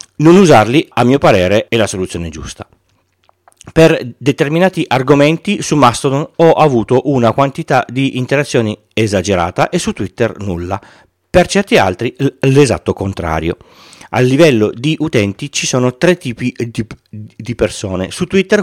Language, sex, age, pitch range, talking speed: Italian, male, 40-59, 100-150 Hz, 140 wpm